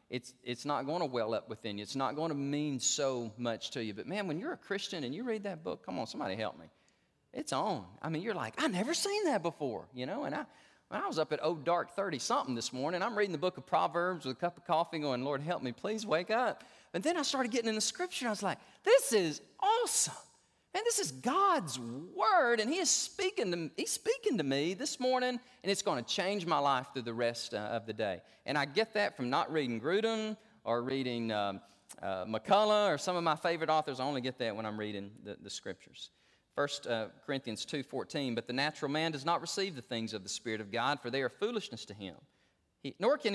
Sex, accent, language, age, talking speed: male, American, English, 40-59, 245 wpm